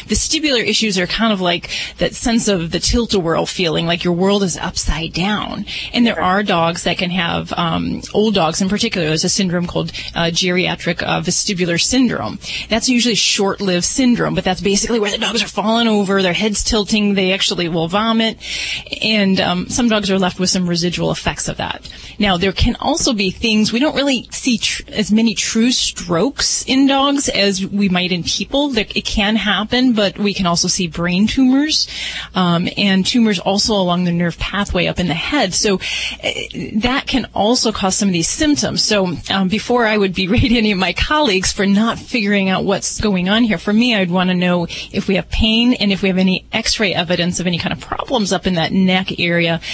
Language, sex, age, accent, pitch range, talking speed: English, female, 30-49, American, 180-215 Hz, 205 wpm